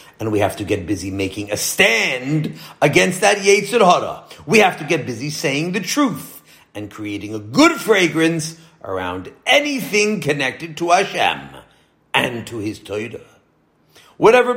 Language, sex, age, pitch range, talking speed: English, male, 40-59, 145-235 Hz, 145 wpm